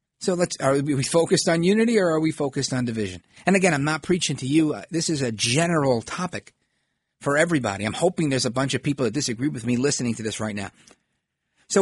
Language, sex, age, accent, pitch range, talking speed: English, male, 40-59, American, 110-175 Hz, 225 wpm